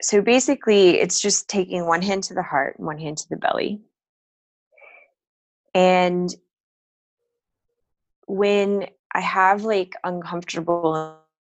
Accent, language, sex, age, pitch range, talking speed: American, English, female, 20-39, 155-200 Hz, 115 wpm